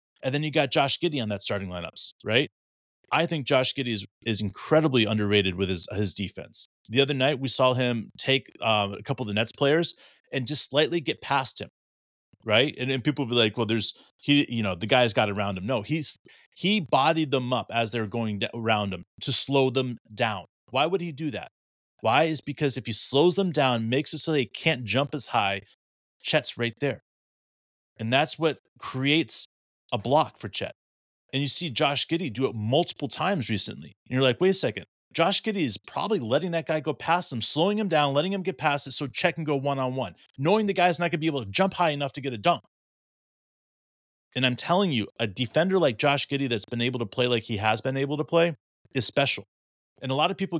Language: English